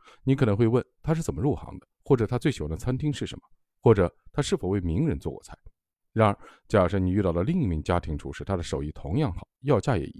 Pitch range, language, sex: 90-130 Hz, Chinese, male